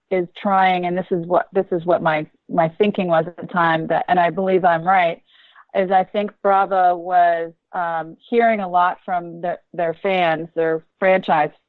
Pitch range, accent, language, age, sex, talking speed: 165-190 Hz, American, English, 40-59, female, 185 wpm